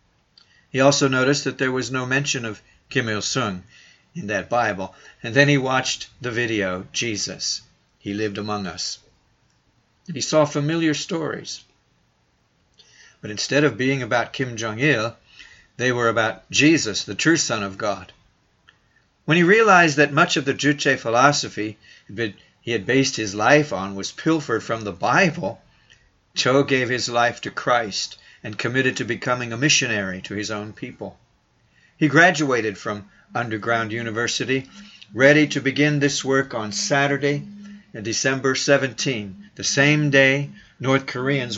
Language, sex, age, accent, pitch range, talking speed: English, male, 60-79, American, 110-145 Hz, 145 wpm